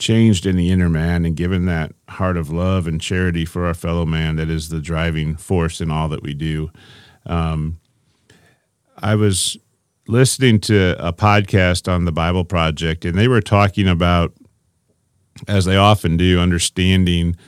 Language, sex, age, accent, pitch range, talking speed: English, male, 40-59, American, 85-100 Hz, 165 wpm